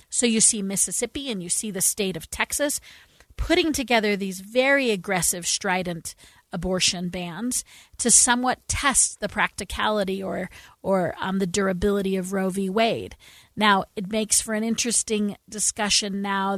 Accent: American